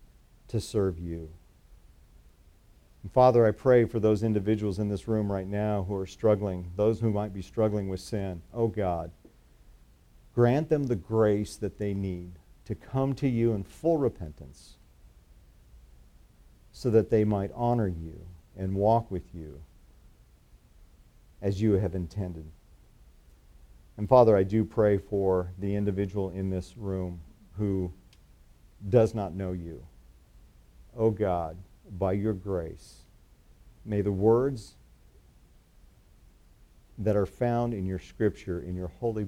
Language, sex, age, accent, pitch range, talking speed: English, male, 50-69, American, 85-110 Hz, 135 wpm